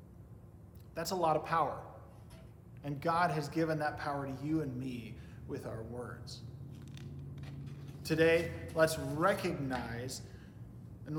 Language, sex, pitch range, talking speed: English, male, 135-180 Hz, 120 wpm